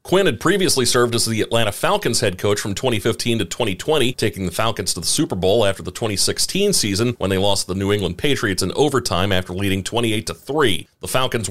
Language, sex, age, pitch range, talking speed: English, male, 40-59, 100-130 Hz, 205 wpm